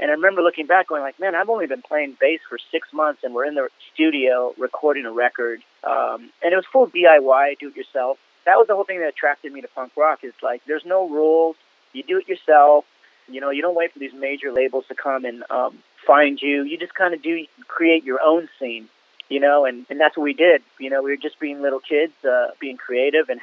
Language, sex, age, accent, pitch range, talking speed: English, male, 30-49, American, 135-165 Hz, 245 wpm